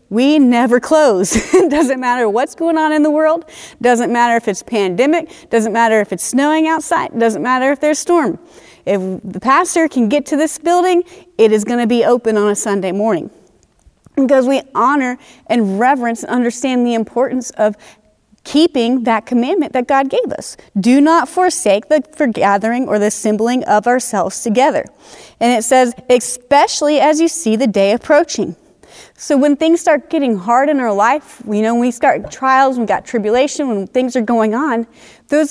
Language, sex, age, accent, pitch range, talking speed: English, female, 30-49, American, 230-285 Hz, 190 wpm